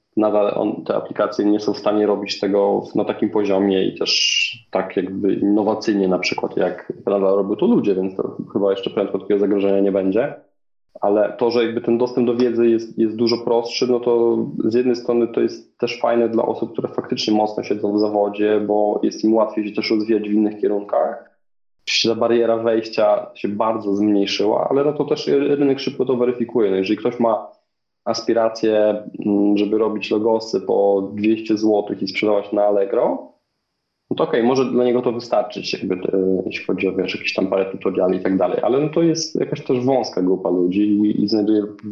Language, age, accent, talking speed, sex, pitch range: Polish, 20-39, native, 195 wpm, male, 100-115 Hz